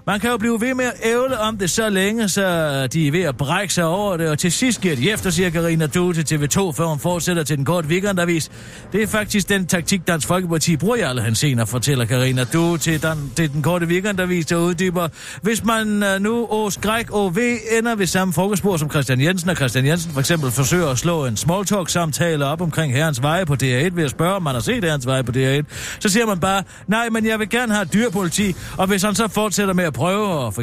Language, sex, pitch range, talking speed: Danish, male, 140-210 Hz, 245 wpm